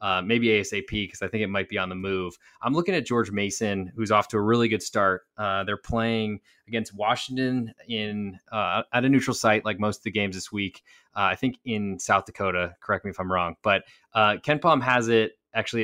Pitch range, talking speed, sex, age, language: 95-115 Hz, 225 wpm, male, 20-39, English